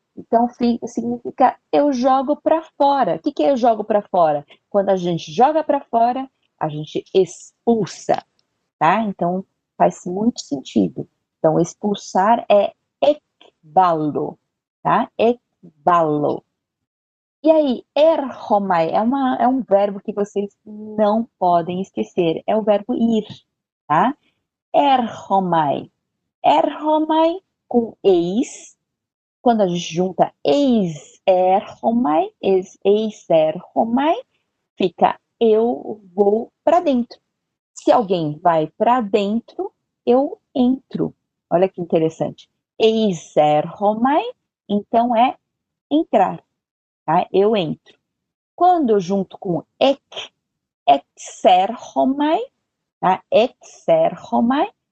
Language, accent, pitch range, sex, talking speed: Portuguese, Brazilian, 190-275 Hz, female, 100 wpm